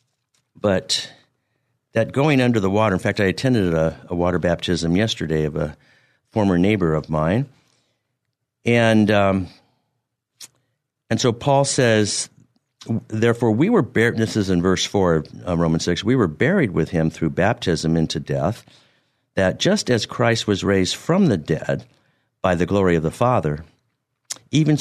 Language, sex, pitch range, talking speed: English, male, 95-130 Hz, 155 wpm